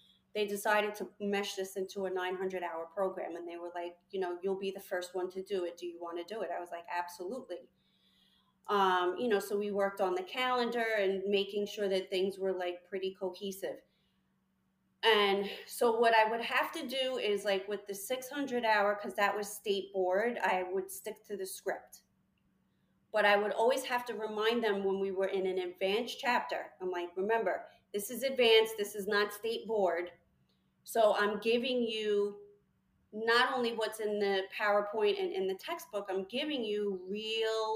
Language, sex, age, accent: English, female, 30-49, American